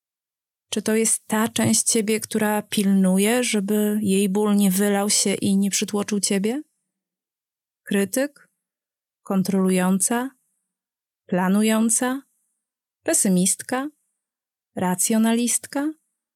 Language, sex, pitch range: Polish, female, 195-240 Hz